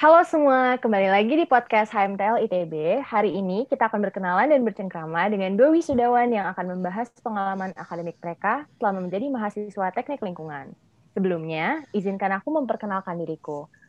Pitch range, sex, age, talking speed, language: 180-230 Hz, female, 20-39, 145 wpm, Indonesian